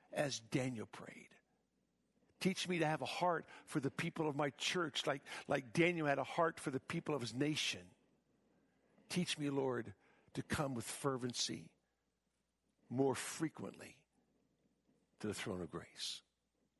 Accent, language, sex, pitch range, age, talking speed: American, English, male, 115-145 Hz, 60-79, 145 wpm